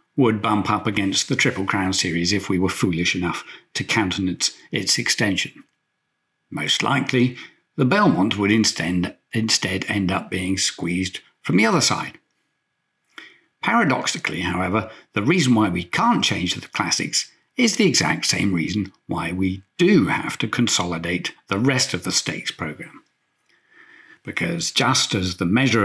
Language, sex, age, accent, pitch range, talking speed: English, male, 60-79, British, 95-125 Hz, 145 wpm